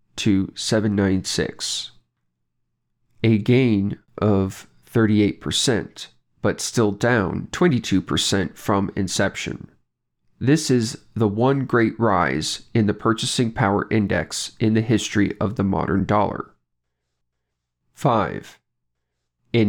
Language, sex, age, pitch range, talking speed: English, male, 40-59, 95-115 Hz, 100 wpm